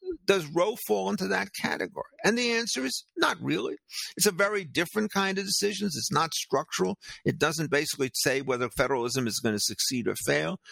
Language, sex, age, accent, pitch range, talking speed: English, male, 50-69, American, 135-190 Hz, 190 wpm